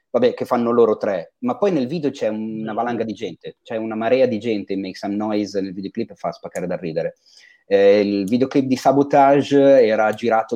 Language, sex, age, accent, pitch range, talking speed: Italian, male, 30-49, native, 105-125 Hz, 210 wpm